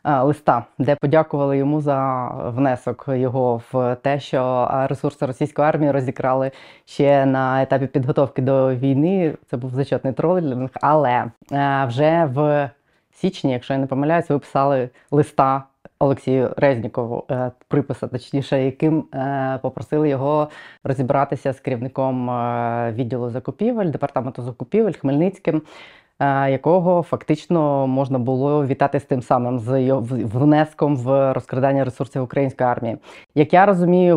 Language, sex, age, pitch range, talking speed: Ukrainian, female, 20-39, 130-150 Hz, 120 wpm